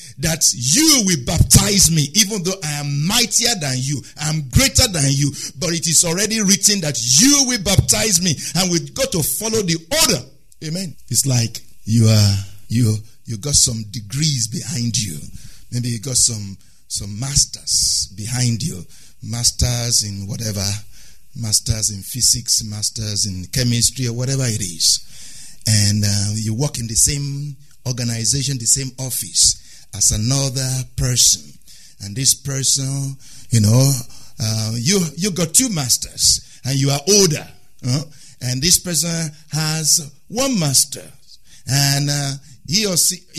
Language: English